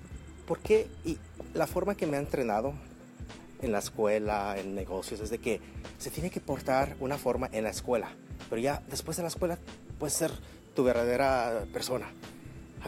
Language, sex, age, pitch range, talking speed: English, male, 30-49, 125-170 Hz, 175 wpm